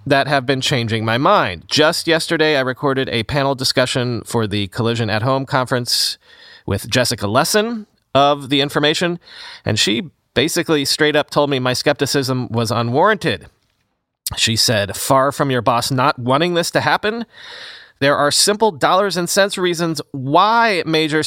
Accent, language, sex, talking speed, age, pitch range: American, English, male, 160 wpm, 30-49, 120-160 Hz